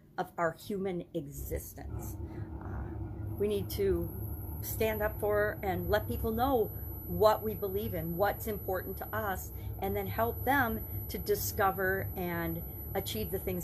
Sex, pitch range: female, 95-110 Hz